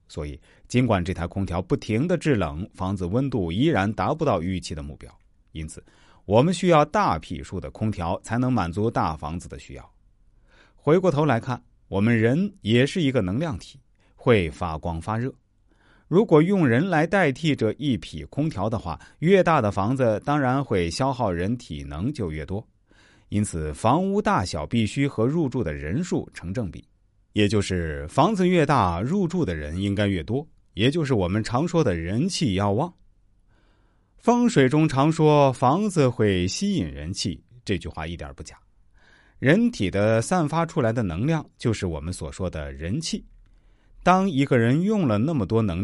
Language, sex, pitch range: Chinese, male, 90-140 Hz